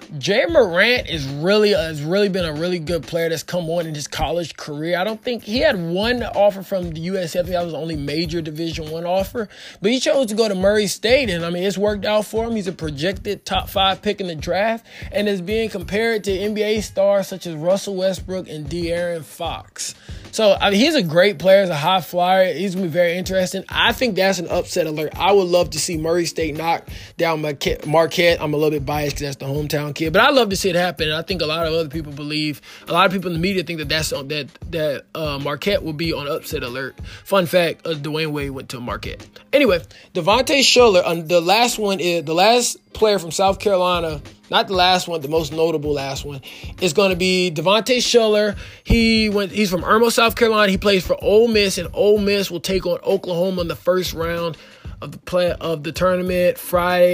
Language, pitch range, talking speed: English, 165-200 Hz, 230 wpm